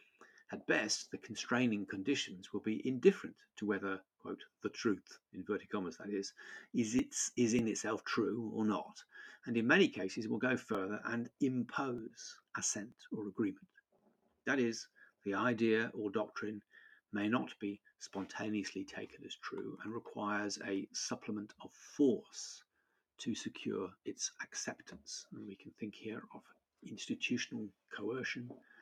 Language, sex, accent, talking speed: English, male, British, 140 wpm